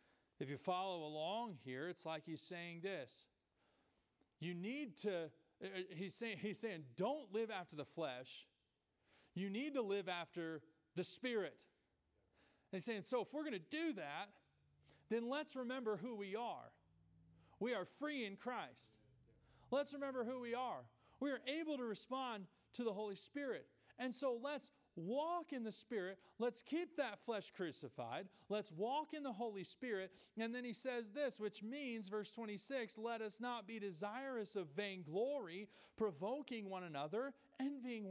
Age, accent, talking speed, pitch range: 40-59, American, 160 wpm, 185-255 Hz